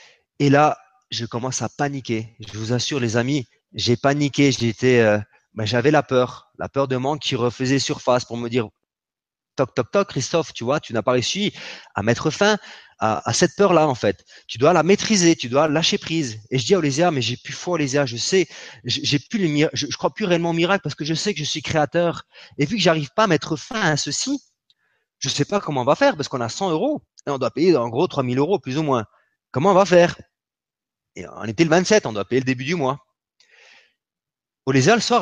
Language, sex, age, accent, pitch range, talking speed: French, male, 30-49, French, 125-170 Hz, 240 wpm